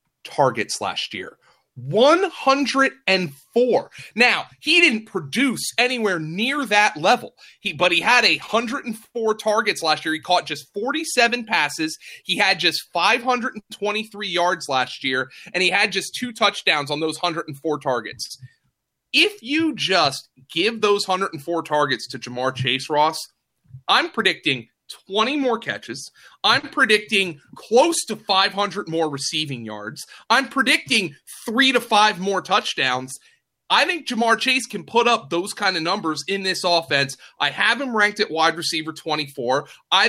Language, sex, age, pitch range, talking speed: English, male, 30-49, 140-215 Hz, 150 wpm